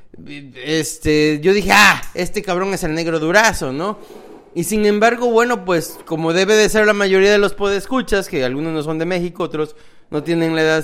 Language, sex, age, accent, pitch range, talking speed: English, male, 30-49, Mexican, 175-225 Hz, 200 wpm